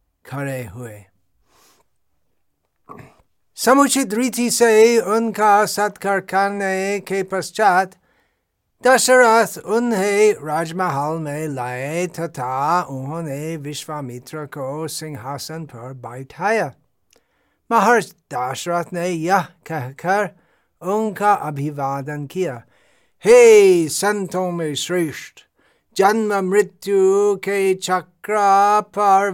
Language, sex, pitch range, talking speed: Hindi, male, 150-195 Hz, 80 wpm